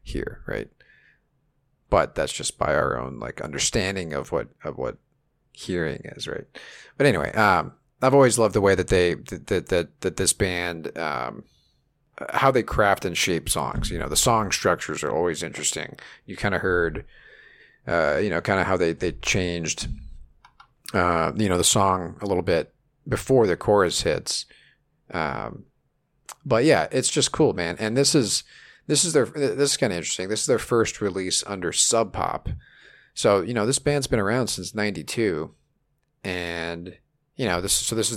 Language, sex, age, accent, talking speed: English, male, 50-69, American, 180 wpm